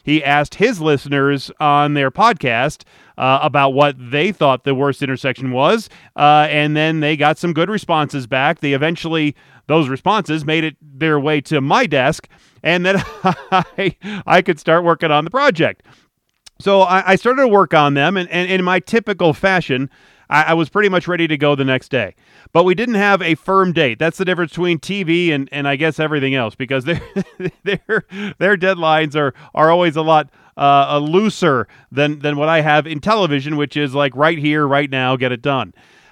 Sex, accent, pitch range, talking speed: male, American, 145-180 Hz, 195 wpm